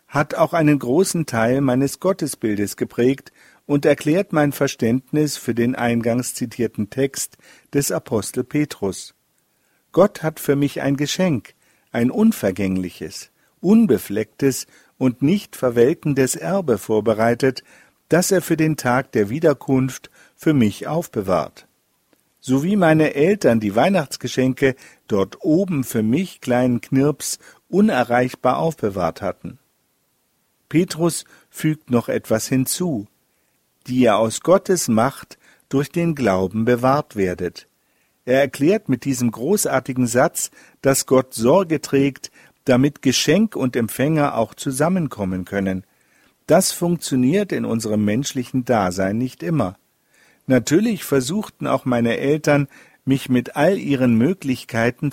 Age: 50-69